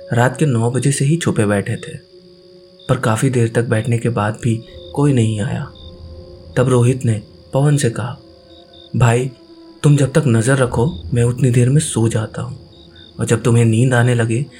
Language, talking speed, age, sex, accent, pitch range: Hindi, 185 wpm, 20-39, male, native, 110-140 Hz